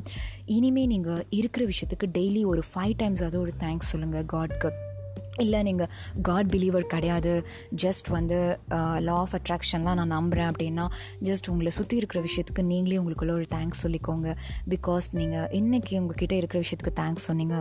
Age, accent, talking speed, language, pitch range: 20-39, native, 155 wpm, Tamil, 160-185 Hz